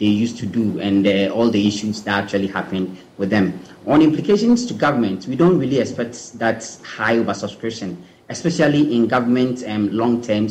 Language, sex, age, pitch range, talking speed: English, male, 30-49, 105-125 Hz, 170 wpm